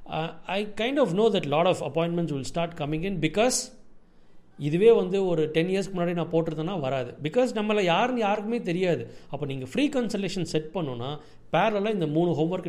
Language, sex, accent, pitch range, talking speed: Tamil, male, native, 160-215 Hz, 180 wpm